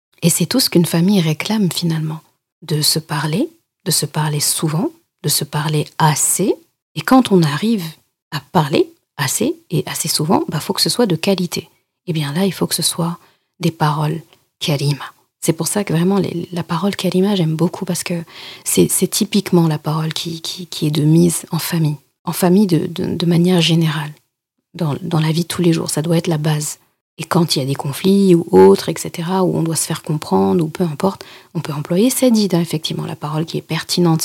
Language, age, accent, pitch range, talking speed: French, 40-59, French, 155-185 Hz, 215 wpm